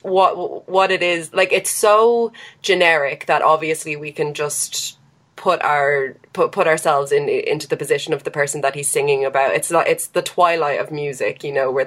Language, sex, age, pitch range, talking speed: English, female, 20-39, 145-185 Hz, 195 wpm